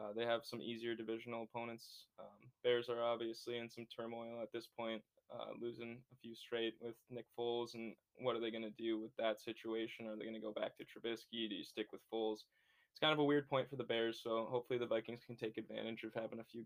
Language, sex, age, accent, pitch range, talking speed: English, male, 10-29, American, 115-125 Hz, 245 wpm